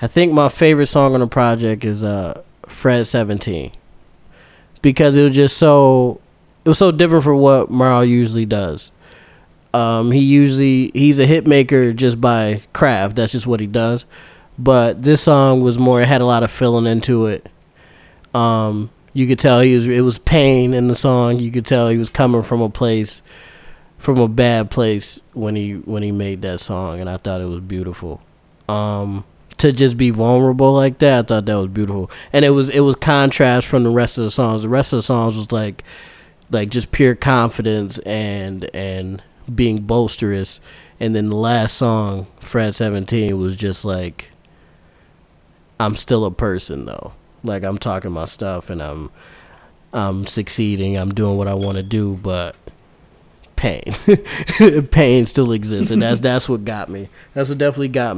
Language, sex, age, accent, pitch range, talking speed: English, male, 20-39, American, 100-130 Hz, 185 wpm